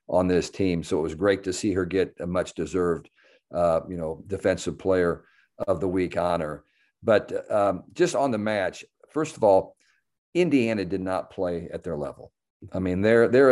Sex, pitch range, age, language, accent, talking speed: male, 85-95 Hz, 50-69, English, American, 190 wpm